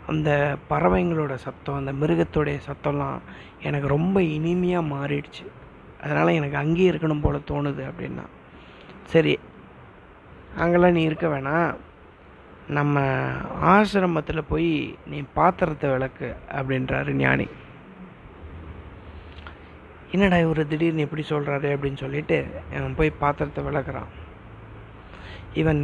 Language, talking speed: Tamil, 100 wpm